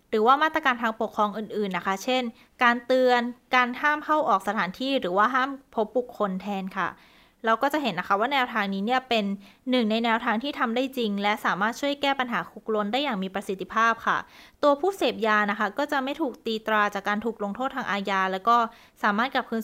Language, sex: Thai, female